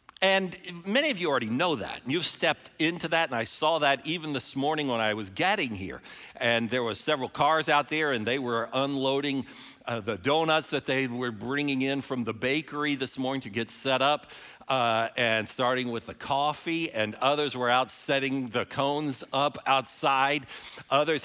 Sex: male